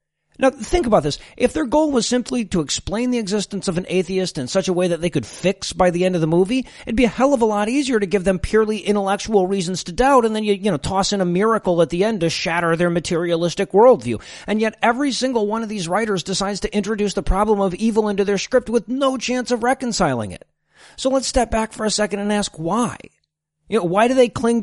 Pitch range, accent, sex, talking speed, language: 175-225 Hz, American, male, 250 wpm, English